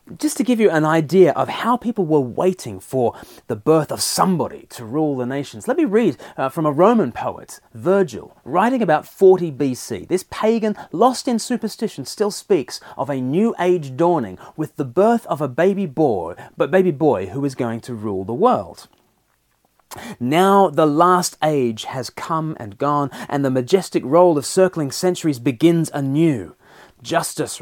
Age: 30-49